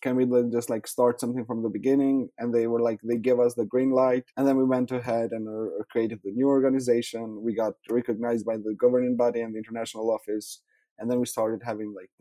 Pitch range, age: 110-130 Hz, 20-39